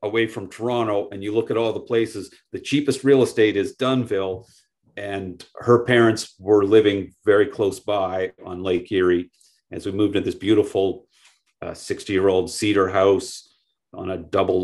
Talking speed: 175 wpm